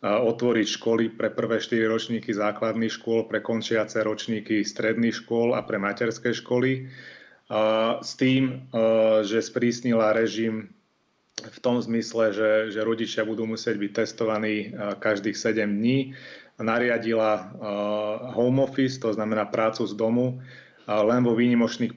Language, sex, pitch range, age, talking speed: Czech, male, 105-115 Hz, 30-49, 125 wpm